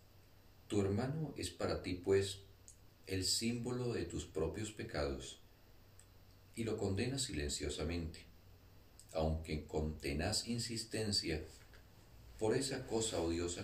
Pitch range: 80-100 Hz